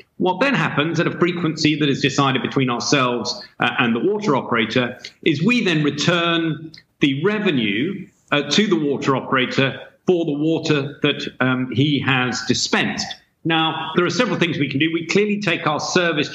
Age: 40-59